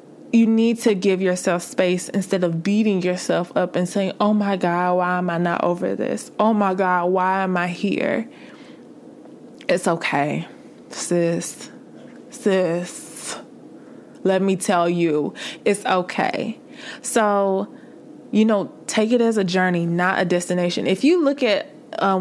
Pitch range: 180-215 Hz